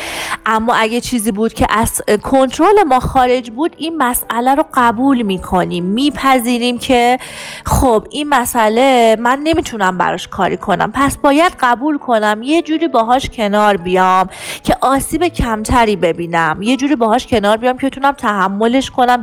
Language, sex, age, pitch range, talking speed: Persian, female, 30-49, 200-275 Hz, 145 wpm